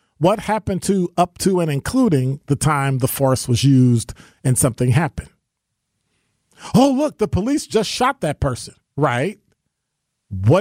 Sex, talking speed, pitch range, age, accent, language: male, 145 wpm, 120-170 Hz, 40-59, American, English